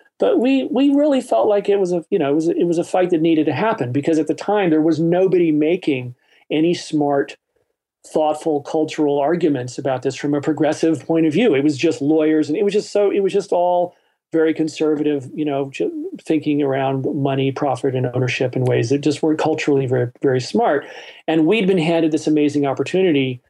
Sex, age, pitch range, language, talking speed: male, 40-59, 145-180 Hz, English, 210 wpm